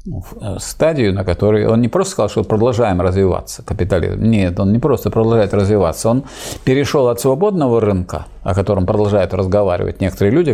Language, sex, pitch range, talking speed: Russian, male, 95-120 Hz, 160 wpm